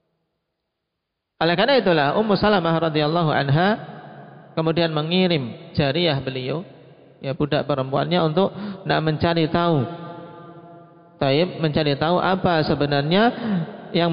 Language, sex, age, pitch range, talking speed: Indonesian, male, 40-59, 150-180 Hz, 100 wpm